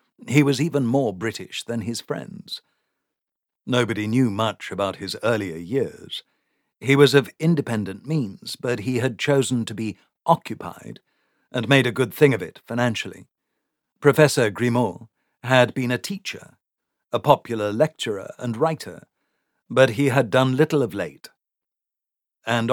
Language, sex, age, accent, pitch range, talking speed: English, male, 50-69, British, 105-135 Hz, 145 wpm